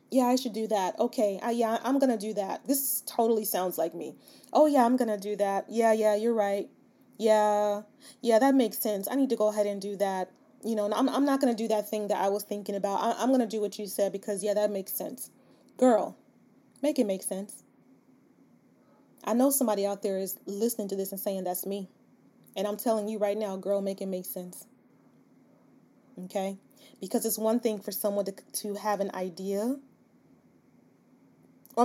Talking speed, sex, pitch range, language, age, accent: 210 wpm, female, 200-250 Hz, English, 20-39, American